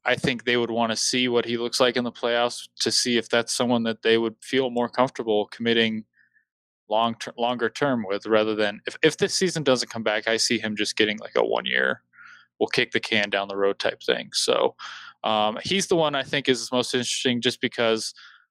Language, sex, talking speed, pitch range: English, male, 225 wpm, 105-125 Hz